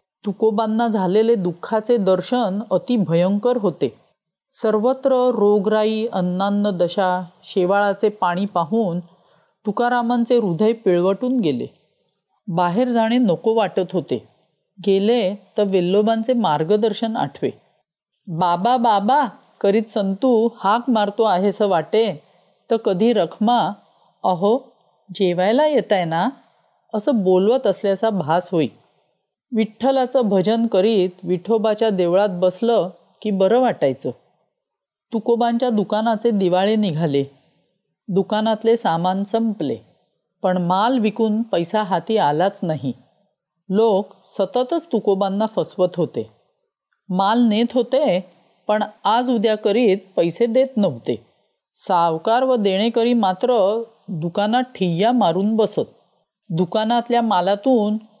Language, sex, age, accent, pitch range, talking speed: Marathi, female, 40-59, native, 185-230 Hz, 100 wpm